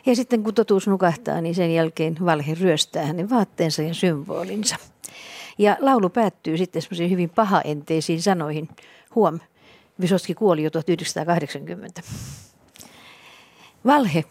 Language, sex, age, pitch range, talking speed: Finnish, female, 60-79, 165-220 Hz, 115 wpm